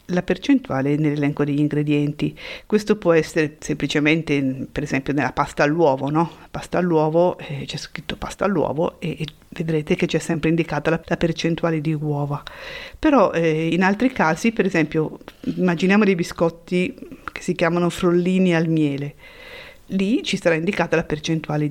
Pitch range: 155-185 Hz